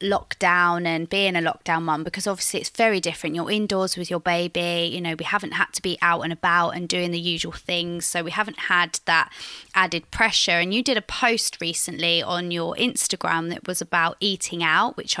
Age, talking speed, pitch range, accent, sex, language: 20-39, 210 wpm, 175-230 Hz, British, female, English